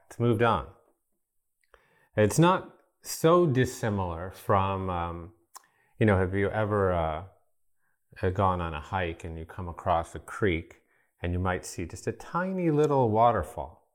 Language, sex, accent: English, male, American